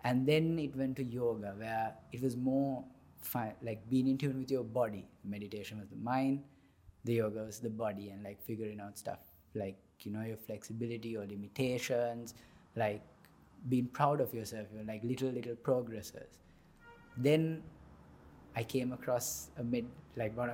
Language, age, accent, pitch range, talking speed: English, 20-39, Indian, 105-135 Hz, 165 wpm